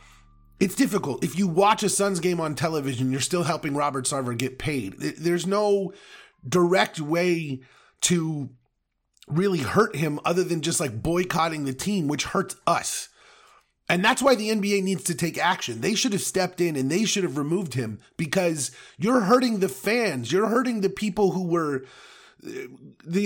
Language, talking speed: English, 175 wpm